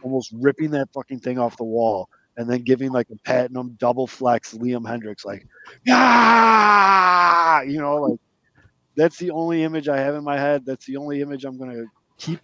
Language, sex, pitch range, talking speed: English, male, 115-155 Hz, 195 wpm